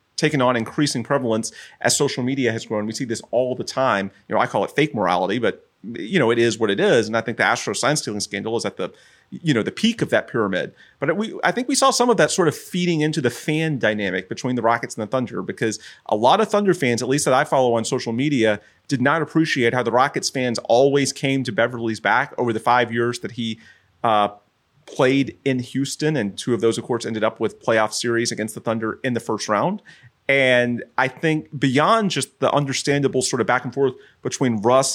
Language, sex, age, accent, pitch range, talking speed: English, male, 30-49, American, 110-140 Hz, 235 wpm